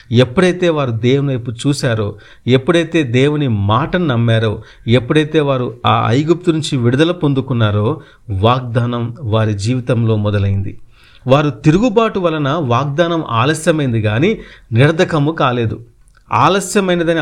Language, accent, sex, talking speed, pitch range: Telugu, native, male, 100 wpm, 120-165 Hz